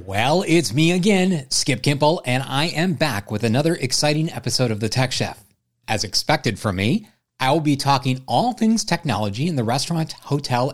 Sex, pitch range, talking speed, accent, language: male, 110-145 Hz, 185 wpm, American, English